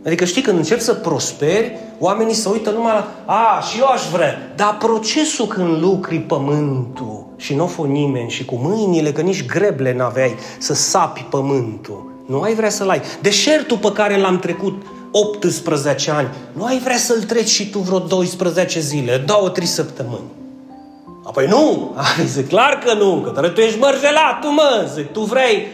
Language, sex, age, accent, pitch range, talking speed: Romanian, male, 30-49, native, 155-225 Hz, 180 wpm